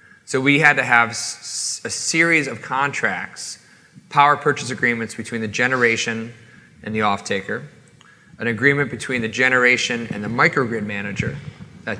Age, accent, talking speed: 30-49, American, 140 wpm